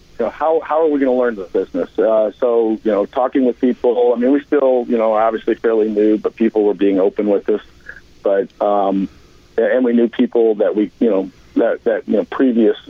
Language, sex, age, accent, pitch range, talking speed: English, male, 50-69, American, 105-125 Hz, 225 wpm